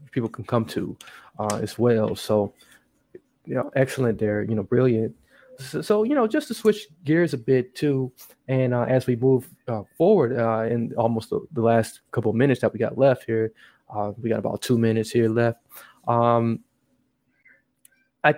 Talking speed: 185 wpm